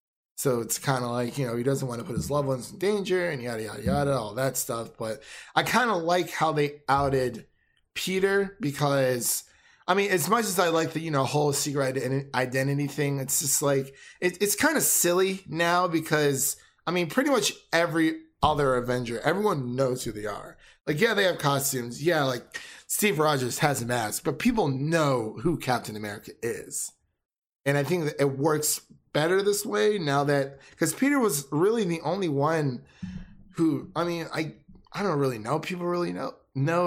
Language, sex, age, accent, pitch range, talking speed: English, male, 20-39, American, 135-170 Hz, 195 wpm